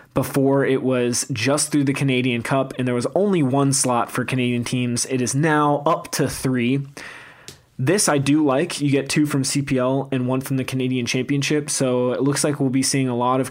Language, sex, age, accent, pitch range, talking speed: English, male, 20-39, American, 125-140 Hz, 215 wpm